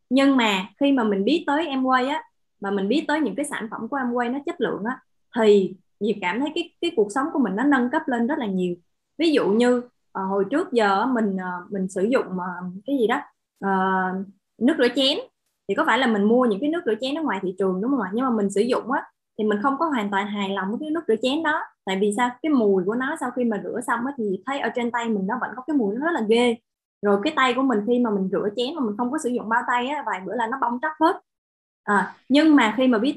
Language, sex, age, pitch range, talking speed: Vietnamese, female, 20-39, 205-280 Hz, 290 wpm